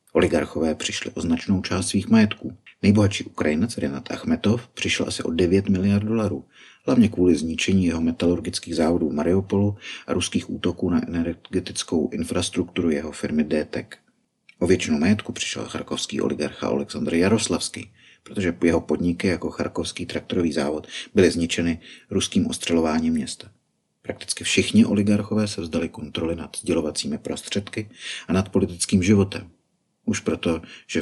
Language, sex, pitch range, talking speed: Czech, male, 85-100 Hz, 135 wpm